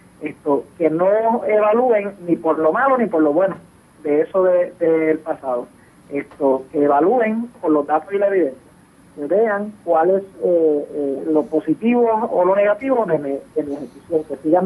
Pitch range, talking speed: 155-205 Hz, 170 wpm